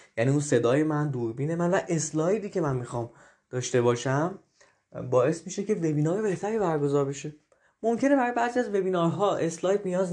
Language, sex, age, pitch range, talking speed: Persian, male, 20-39, 130-175 Hz, 160 wpm